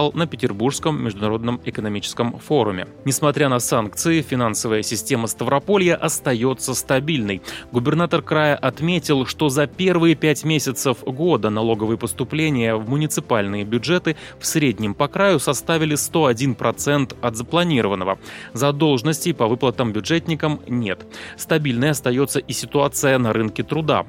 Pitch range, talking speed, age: 115-150 Hz, 120 wpm, 20-39